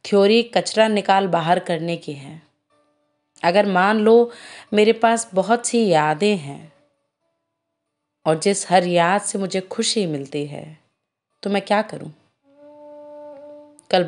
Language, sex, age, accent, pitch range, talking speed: Hindi, female, 30-49, native, 160-220 Hz, 130 wpm